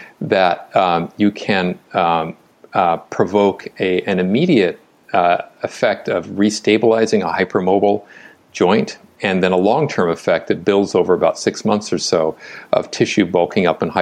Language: English